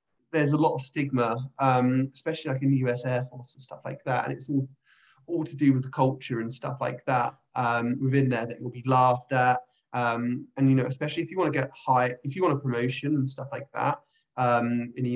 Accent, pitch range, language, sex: British, 125-140 Hz, English, male